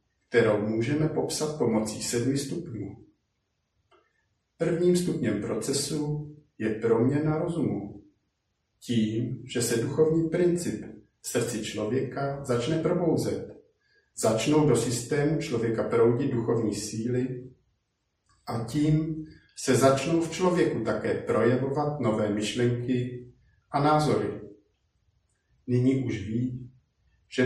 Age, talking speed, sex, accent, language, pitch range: 50-69, 100 wpm, male, native, Czech, 110-150 Hz